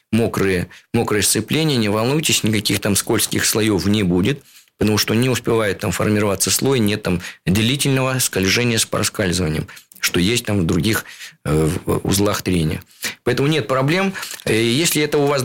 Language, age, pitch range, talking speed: Russian, 20-39, 105-125 Hz, 155 wpm